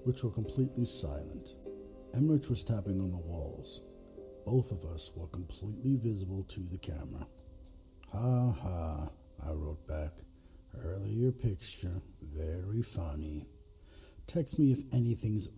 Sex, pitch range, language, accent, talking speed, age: male, 80-105 Hz, English, American, 125 wpm, 60-79